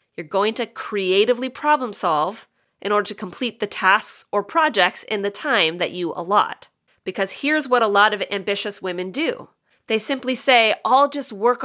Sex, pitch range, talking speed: female, 195-250 Hz, 180 wpm